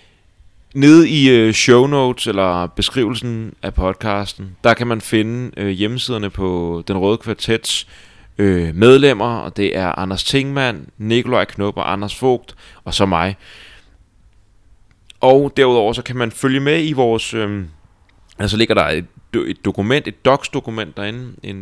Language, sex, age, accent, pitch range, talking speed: Danish, male, 30-49, native, 95-115 Hz, 135 wpm